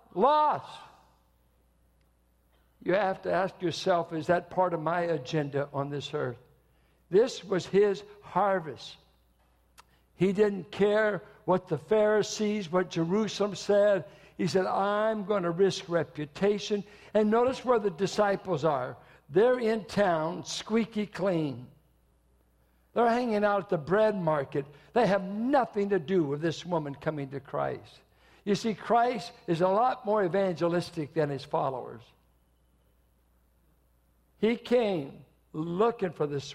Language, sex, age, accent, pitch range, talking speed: English, male, 60-79, American, 155-220 Hz, 130 wpm